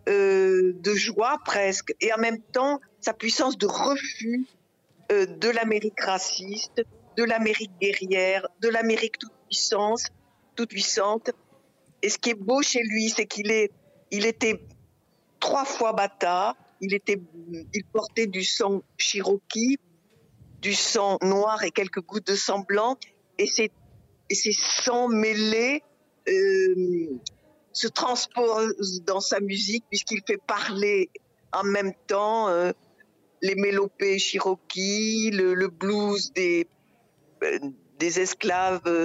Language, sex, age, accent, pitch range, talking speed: French, female, 50-69, French, 190-230 Hz, 130 wpm